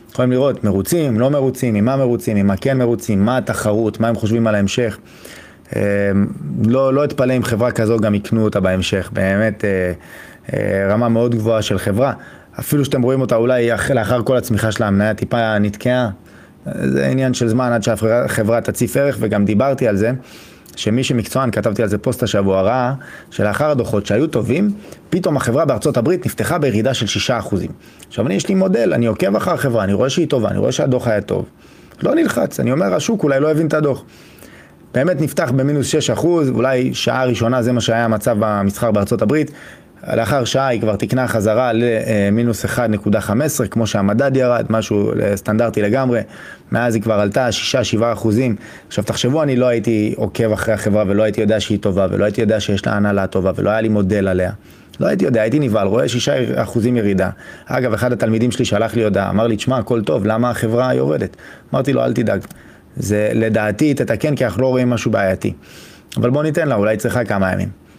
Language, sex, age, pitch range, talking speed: Hebrew, male, 20-39, 105-125 Hz, 180 wpm